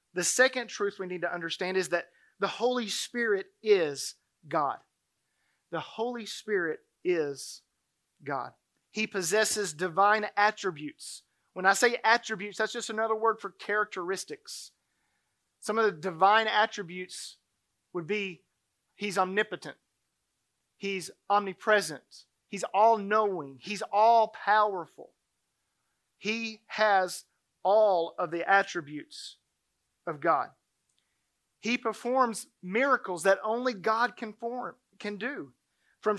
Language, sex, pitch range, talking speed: English, male, 190-235 Hz, 110 wpm